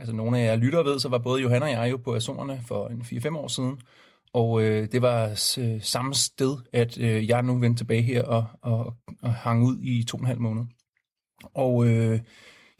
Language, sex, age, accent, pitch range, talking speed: Danish, male, 30-49, native, 115-130 Hz, 205 wpm